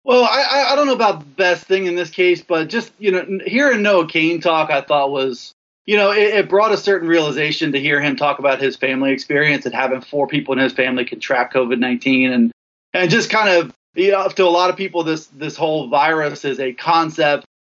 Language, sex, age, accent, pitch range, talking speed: English, male, 30-49, American, 150-200 Hz, 225 wpm